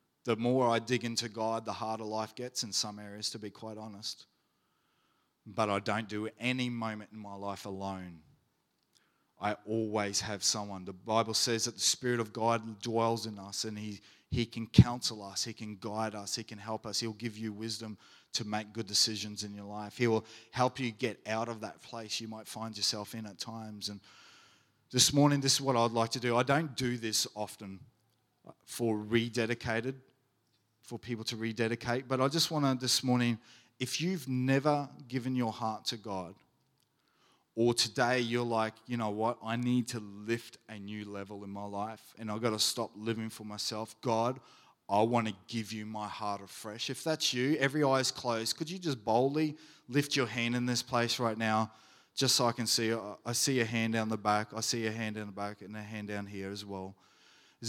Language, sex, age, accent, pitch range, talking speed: English, male, 30-49, Australian, 105-120 Hz, 205 wpm